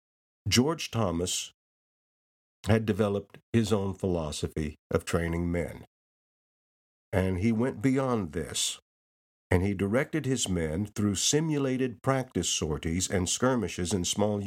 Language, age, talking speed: English, 50-69, 115 wpm